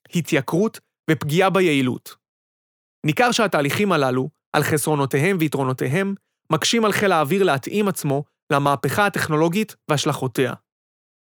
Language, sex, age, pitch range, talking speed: Hebrew, male, 30-49, 145-200 Hz, 95 wpm